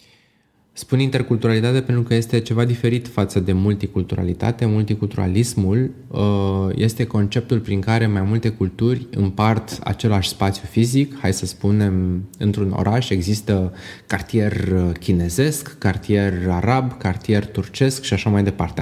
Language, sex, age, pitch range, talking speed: Romanian, male, 20-39, 95-120 Hz, 120 wpm